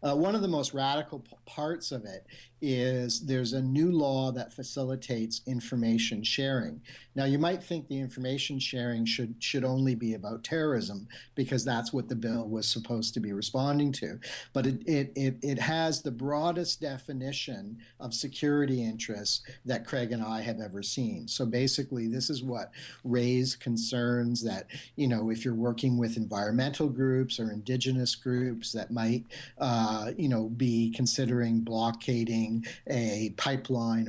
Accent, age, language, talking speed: American, 50-69, English, 160 wpm